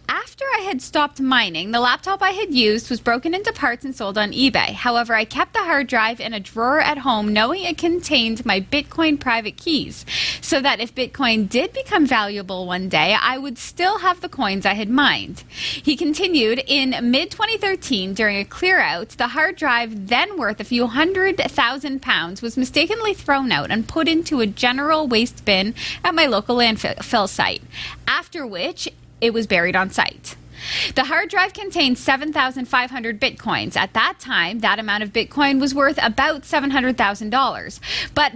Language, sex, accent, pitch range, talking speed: English, female, American, 230-305 Hz, 180 wpm